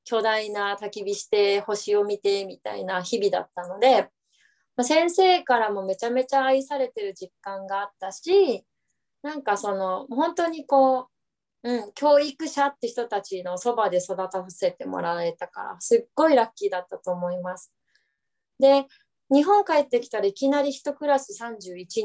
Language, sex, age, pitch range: Japanese, female, 20-39, 200-275 Hz